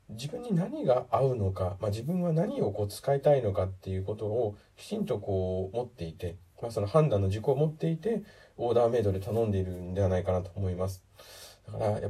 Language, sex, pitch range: Japanese, male, 95-130 Hz